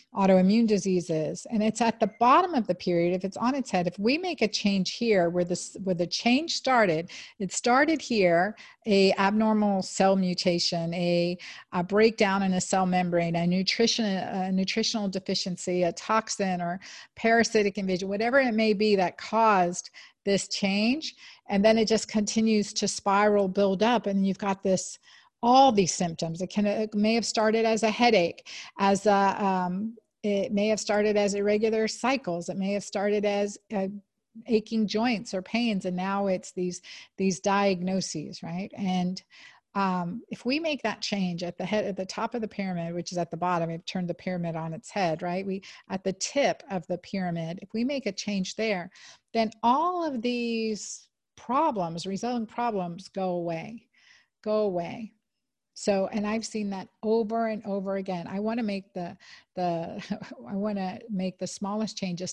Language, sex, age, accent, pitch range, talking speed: English, female, 50-69, American, 185-220 Hz, 175 wpm